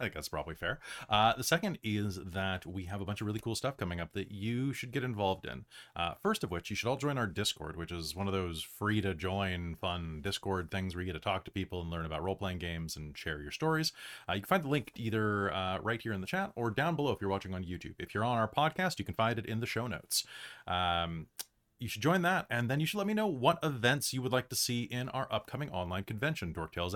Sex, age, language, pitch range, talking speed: male, 30-49, English, 95-130 Hz, 265 wpm